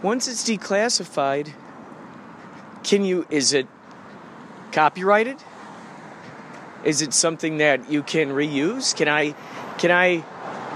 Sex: male